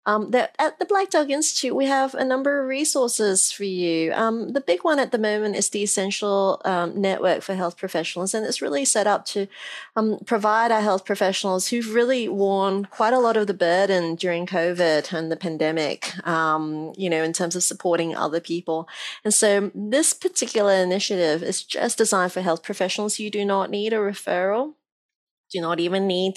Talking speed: 190 wpm